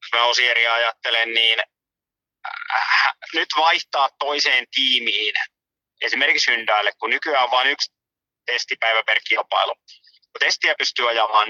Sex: male